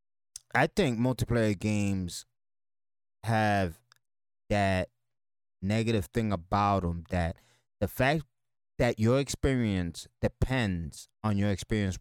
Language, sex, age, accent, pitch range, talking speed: English, male, 30-49, American, 100-125 Hz, 100 wpm